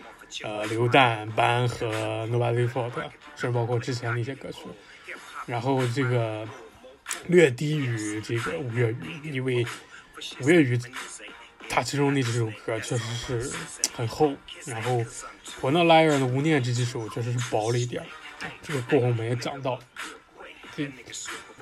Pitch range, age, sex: 120-150 Hz, 20-39, male